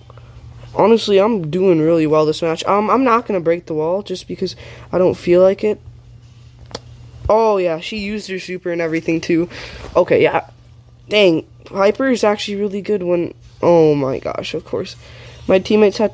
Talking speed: 180 wpm